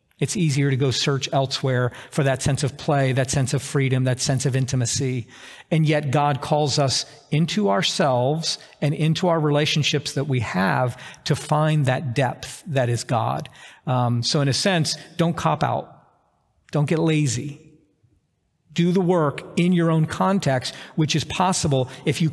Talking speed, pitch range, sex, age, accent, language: 170 wpm, 130-155 Hz, male, 50-69, American, English